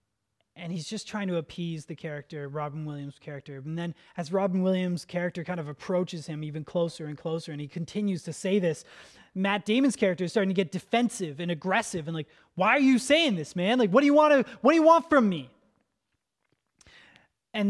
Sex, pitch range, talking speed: male, 150-190 Hz, 210 wpm